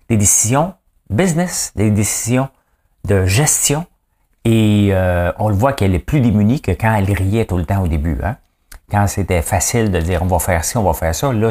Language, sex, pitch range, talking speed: English, male, 85-105 Hz, 210 wpm